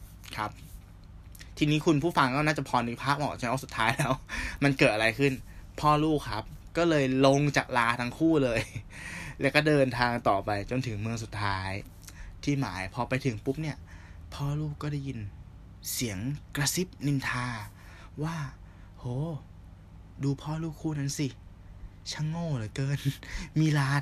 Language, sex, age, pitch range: Thai, male, 20-39, 95-135 Hz